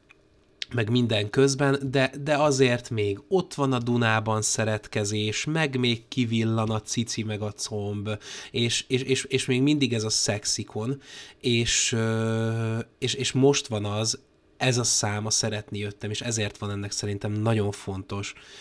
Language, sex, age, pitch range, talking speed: Hungarian, male, 20-39, 100-120 Hz, 150 wpm